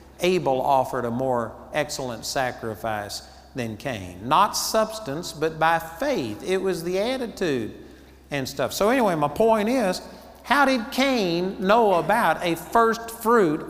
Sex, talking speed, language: male, 140 wpm, English